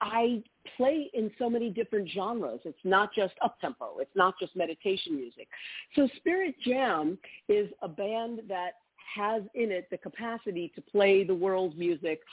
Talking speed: 160 wpm